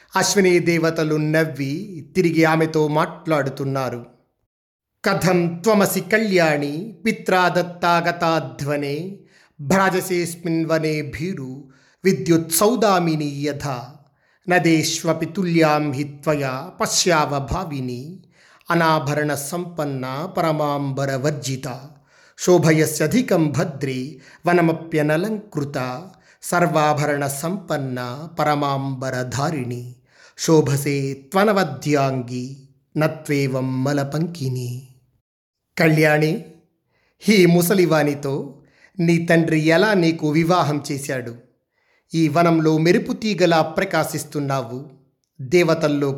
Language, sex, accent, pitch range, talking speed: Telugu, male, native, 140-170 Hz, 55 wpm